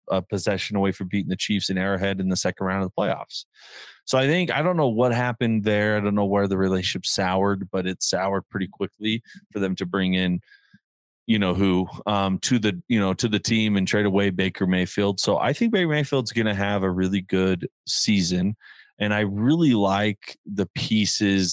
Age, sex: 30-49, male